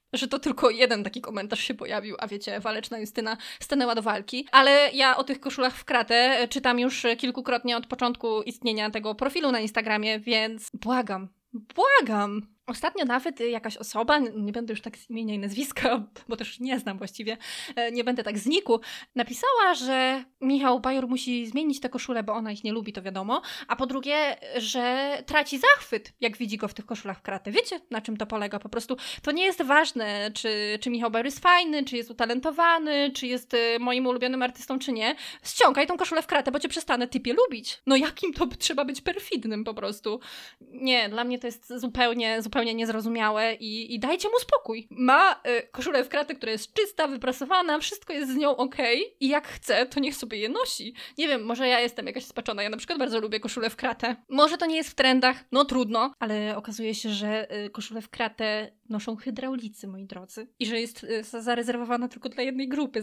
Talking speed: 200 wpm